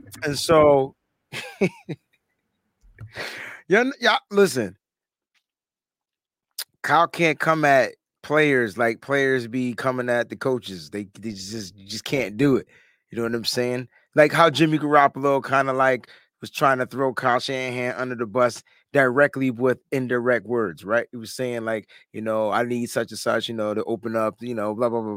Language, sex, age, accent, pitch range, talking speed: English, male, 30-49, American, 120-195 Hz, 170 wpm